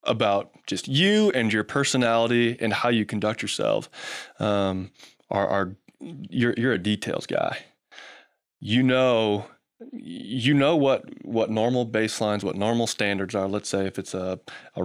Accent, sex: American, male